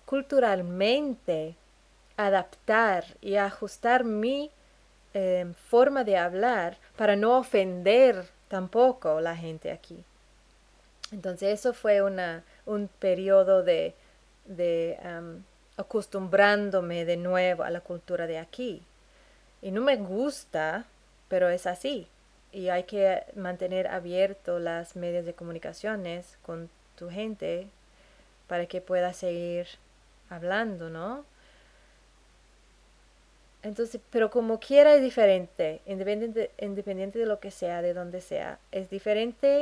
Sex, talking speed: female, 115 wpm